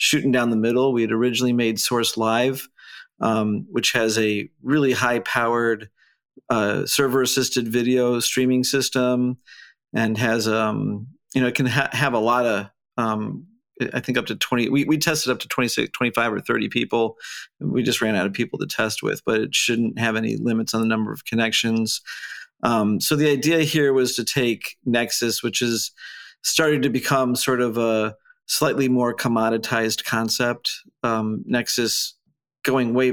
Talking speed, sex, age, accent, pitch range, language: 170 wpm, male, 50-69, American, 115-130 Hz, English